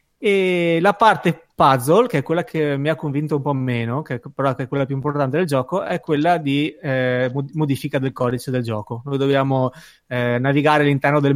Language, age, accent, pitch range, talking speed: Italian, 20-39, native, 130-155 Hz, 200 wpm